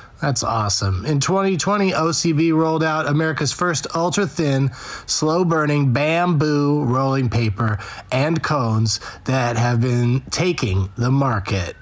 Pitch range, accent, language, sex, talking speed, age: 135-175 Hz, American, English, male, 110 wpm, 30-49